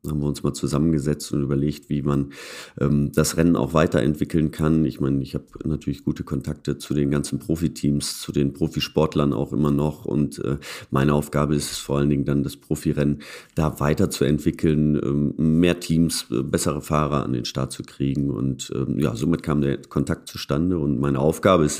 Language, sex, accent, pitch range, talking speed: German, male, German, 70-80 Hz, 190 wpm